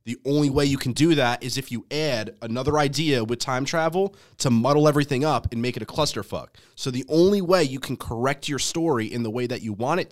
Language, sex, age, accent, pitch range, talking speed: English, male, 20-39, American, 110-140 Hz, 245 wpm